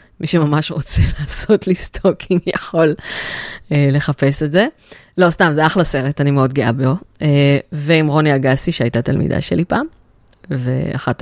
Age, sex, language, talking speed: 20-39, female, Hebrew, 155 wpm